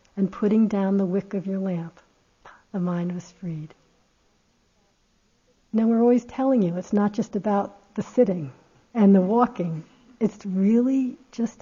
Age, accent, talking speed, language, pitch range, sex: 60-79, American, 150 wpm, English, 185-215 Hz, female